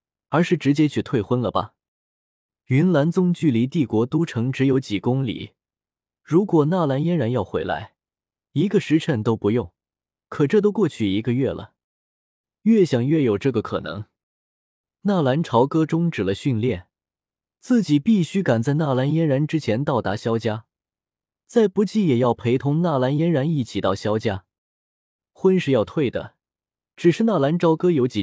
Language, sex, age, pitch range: Chinese, male, 20-39, 110-165 Hz